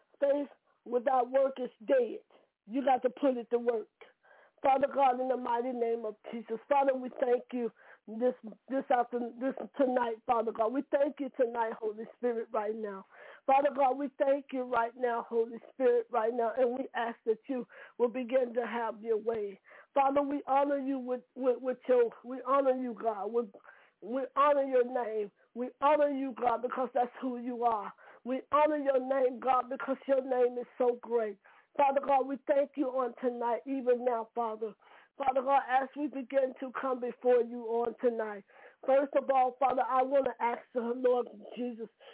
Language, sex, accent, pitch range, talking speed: English, female, American, 235-270 Hz, 185 wpm